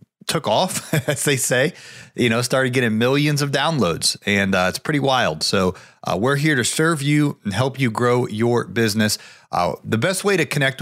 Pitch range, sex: 115-145 Hz, male